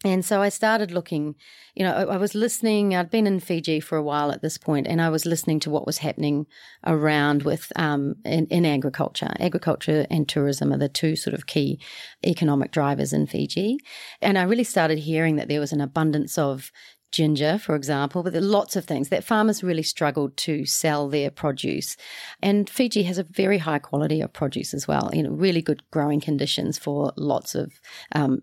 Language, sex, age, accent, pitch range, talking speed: English, female, 40-59, Australian, 145-185 Hz, 205 wpm